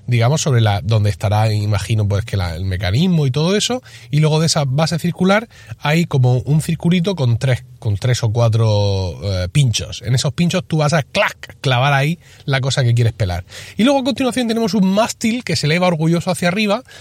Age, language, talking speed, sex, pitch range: 30-49, Spanish, 210 wpm, male, 115-170 Hz